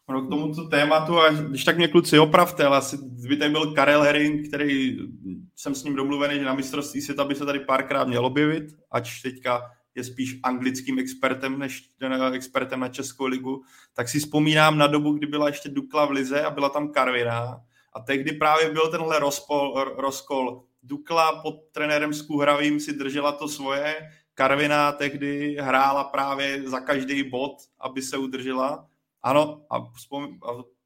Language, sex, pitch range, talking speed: Czech, male, 130-145 Hz, 165 wpm